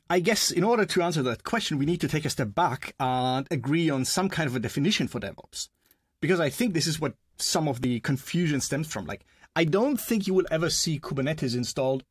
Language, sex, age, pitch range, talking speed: English, male, 30-49, 130-180 Hz, 235 wpm